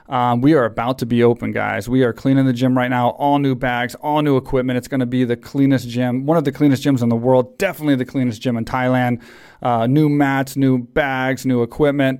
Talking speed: 240 wpm